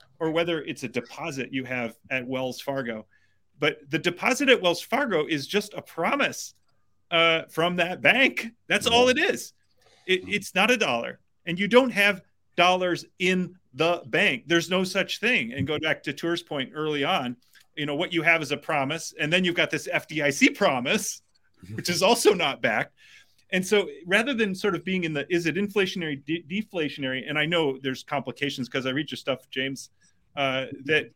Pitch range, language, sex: 140-190 Hz, English, male